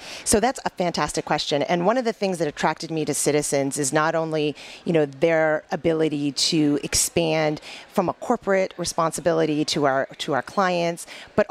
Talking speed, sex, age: 175 wpm, female, 40-59